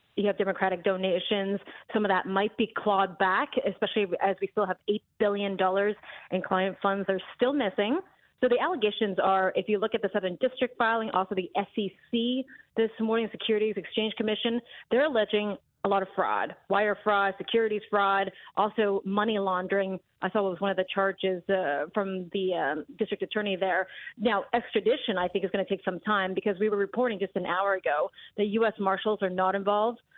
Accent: American